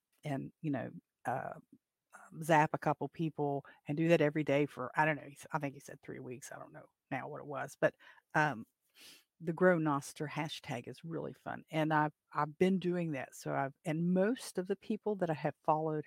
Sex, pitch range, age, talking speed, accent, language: female, 150-175 Hz, 50-69, 210 wpm, American, English